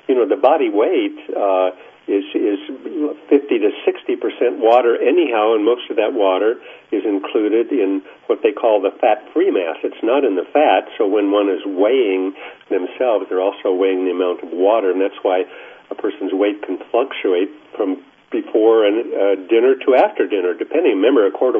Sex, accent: male, American